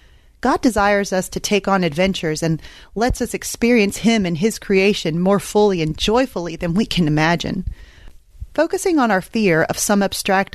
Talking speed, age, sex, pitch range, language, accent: 170 wpm, 30-49, female, 170-225 Hz, English, American